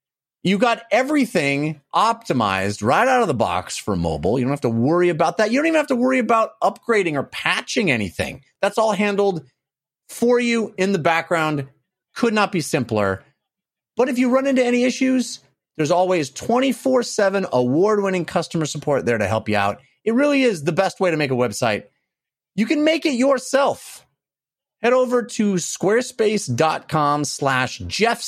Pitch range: 140-230 Hz